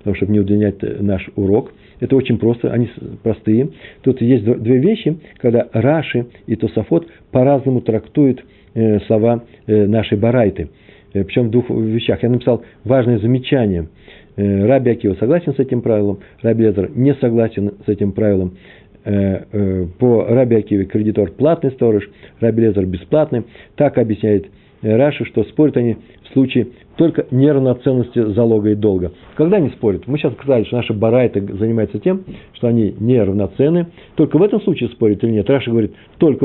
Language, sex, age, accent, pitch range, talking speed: Russian, male, 50-69, native, 105-130 Hz, 145 wpm